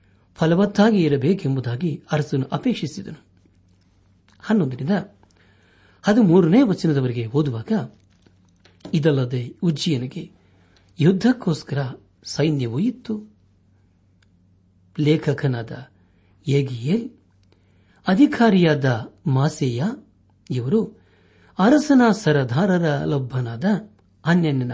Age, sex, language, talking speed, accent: 60-79, male, Kannada, 50 wpm, native